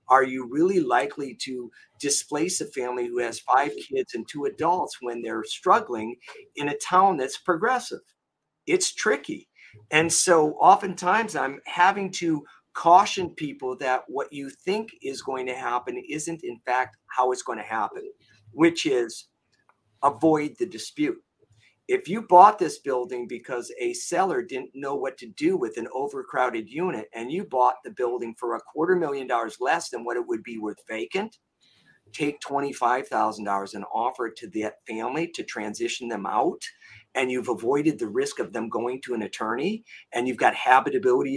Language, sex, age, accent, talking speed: English, male, 50-69, American, 175 wpm